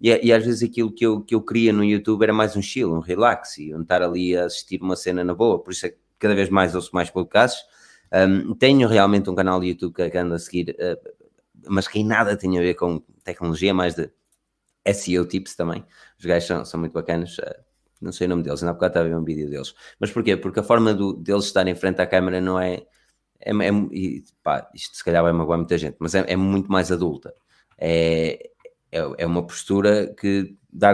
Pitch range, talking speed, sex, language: 85-105 Hz, 235 wpm, male, Portuguese